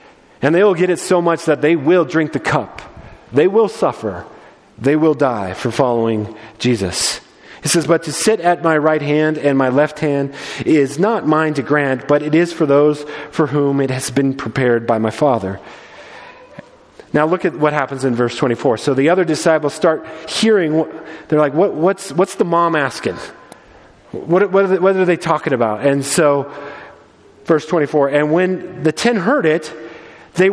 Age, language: 40-59, English